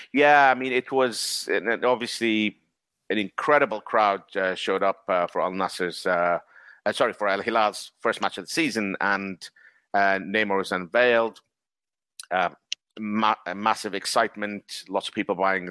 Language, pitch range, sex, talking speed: English, 100-125 Hz, male, 155 wpm